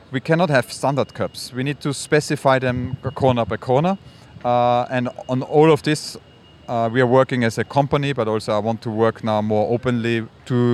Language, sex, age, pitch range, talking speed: English, male, 30-49, 120-145 Hz, 200 wpm